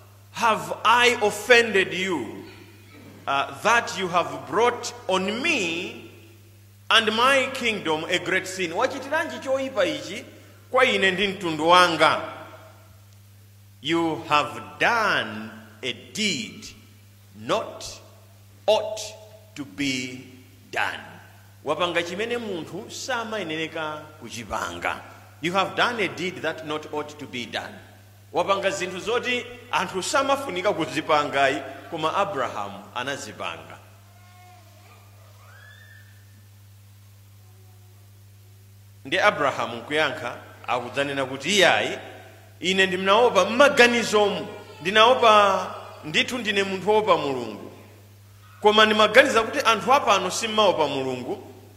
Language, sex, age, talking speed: English, male, 40-59, 85 wpm